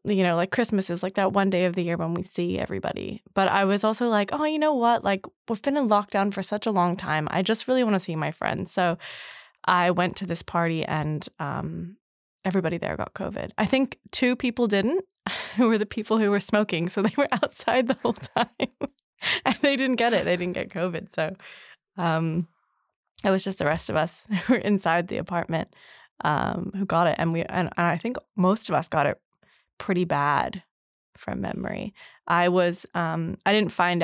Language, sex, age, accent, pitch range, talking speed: English, female, 20-39, American, 170-215 Hz, 215 wpm